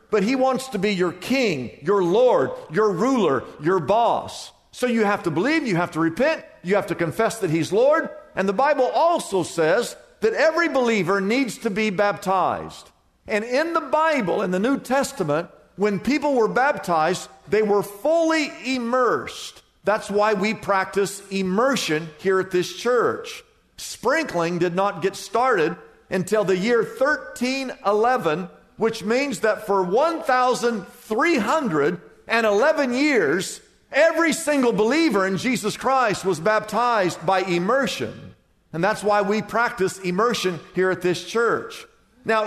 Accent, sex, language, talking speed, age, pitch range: American, male, English, 145 wpm, 50-69, 175-250 Hz